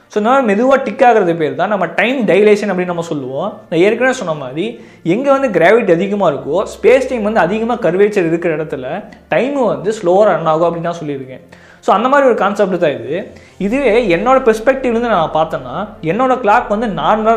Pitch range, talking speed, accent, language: 165-235 Hz, 180 wpm, native, Tamil